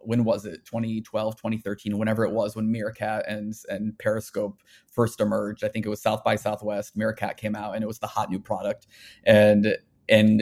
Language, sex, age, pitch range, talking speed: English, male, 20-39, 105-115 Hz, 195 wpm